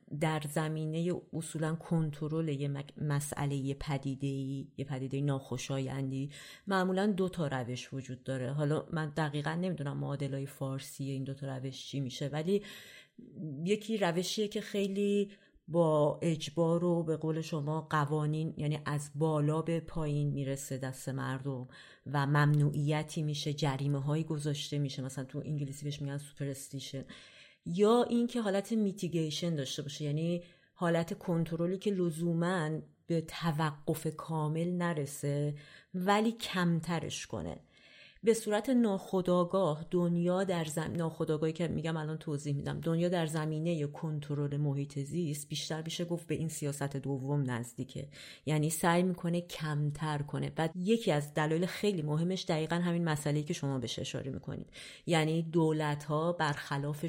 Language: Persian